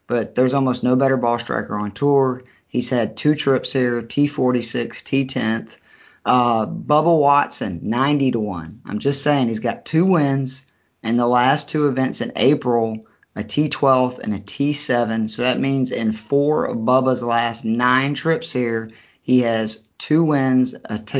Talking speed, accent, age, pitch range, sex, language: 160 wpm, American, 30-49, 120-135 Hz, male, English